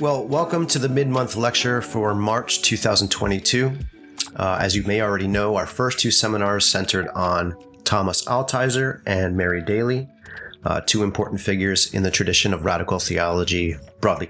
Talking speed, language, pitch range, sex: 155 wpm, English, 95-125 Hz, male